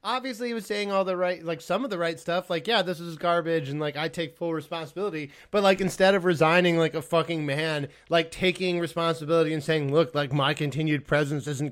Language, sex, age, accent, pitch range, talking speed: English, male, 20-39, American, 145-170 Hz, 225 wpm